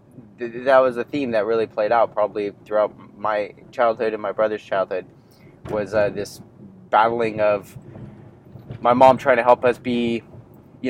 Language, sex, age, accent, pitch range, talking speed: English, male, 30-49, American, 100-120 Hz, 165 wpm